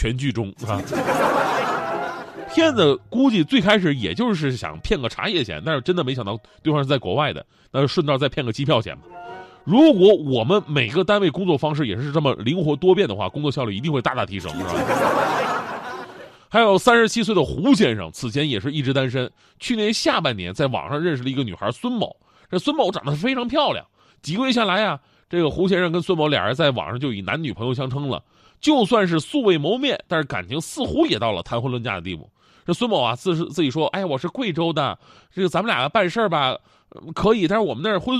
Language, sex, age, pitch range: Chinese, male, 30-49, 135-210 Hz